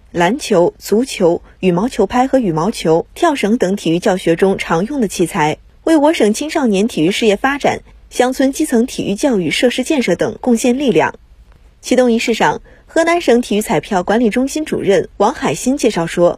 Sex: female